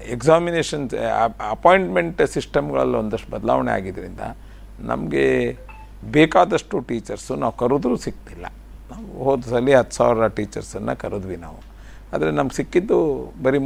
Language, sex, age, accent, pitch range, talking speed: Kannada, male, 50-69, native, 110-135 Hz, 110 wpm